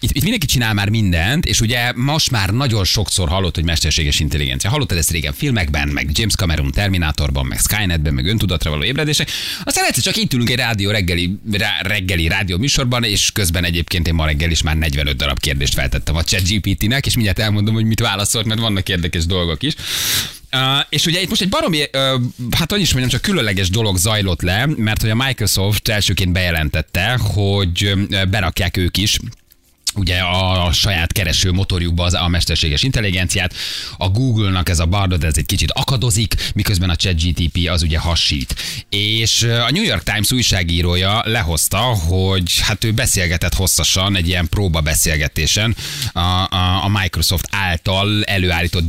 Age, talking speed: 30-49, 170 wpm